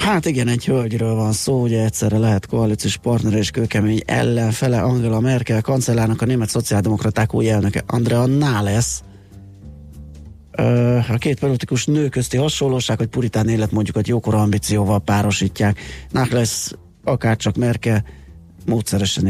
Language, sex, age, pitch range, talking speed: Hungarian, male, 30-49, 105-125 Hz, 135 wpm